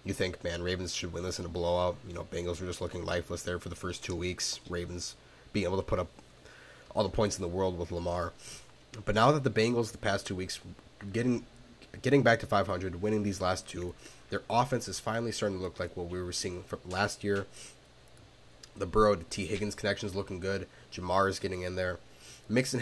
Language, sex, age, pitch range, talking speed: English, male, 20-39, 90-110 Hz, 225 wpm